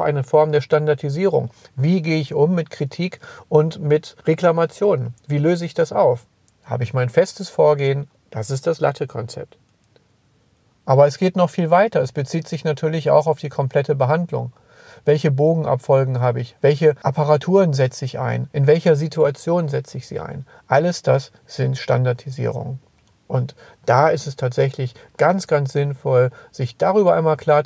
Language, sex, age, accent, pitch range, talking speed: German, male, 40-59, German, 130-165 Hz, 160 wpm